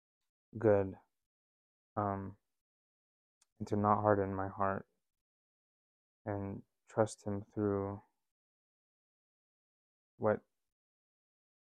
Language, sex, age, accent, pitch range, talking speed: English, male, 20-39, American, 100-110 Hz, 65 wpm